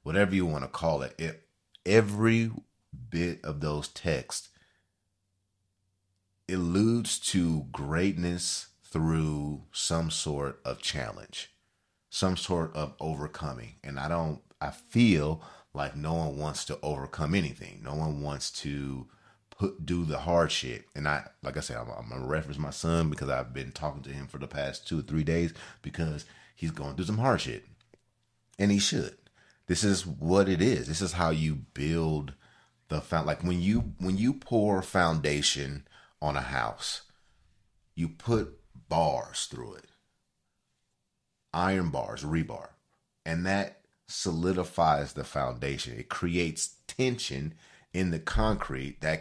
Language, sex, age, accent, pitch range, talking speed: English, male, 30-49, American, 75-95 Hz, 145 wpm